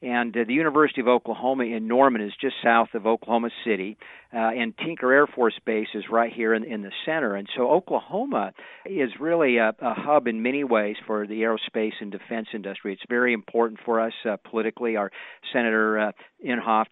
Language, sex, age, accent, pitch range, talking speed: English, male, 50-69, American, 105-120 Hz, 195 wpm